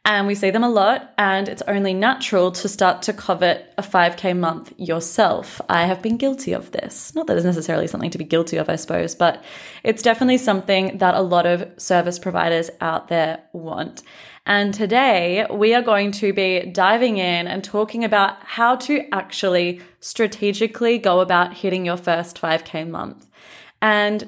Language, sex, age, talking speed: English, female, 20-39, 180 wpm